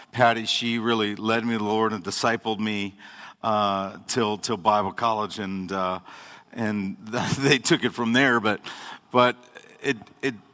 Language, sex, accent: English, male, American